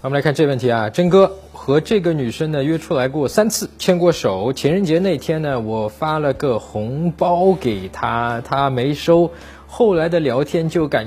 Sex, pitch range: male, 120-175 Hz